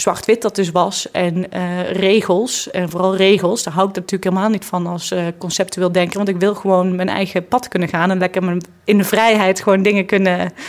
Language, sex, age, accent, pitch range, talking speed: Dutch, female, 20-39, Dutch, 180-215 Hz, 215 wpm